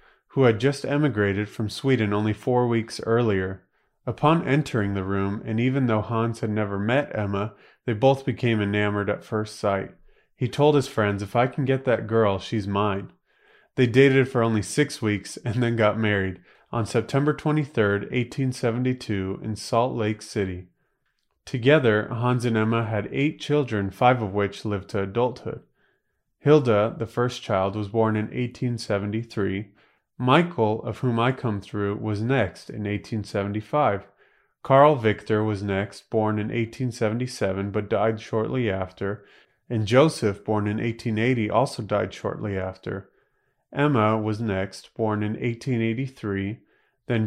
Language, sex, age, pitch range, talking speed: English, male, 30-49, 105-125 Hz, 150 wpm